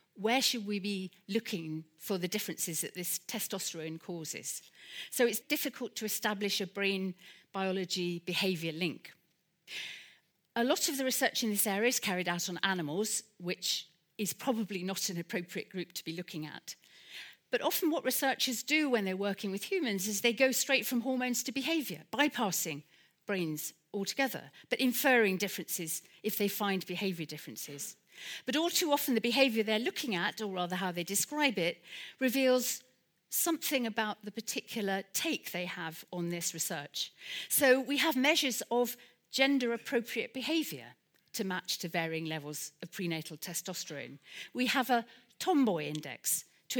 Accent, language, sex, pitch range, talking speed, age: British, English, female, 175-240 Hz, 155 wpm, 40-59